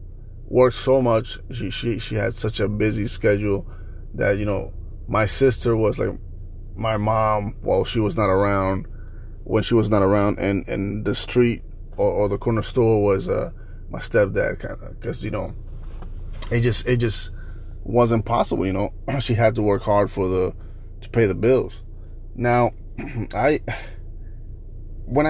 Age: 30-49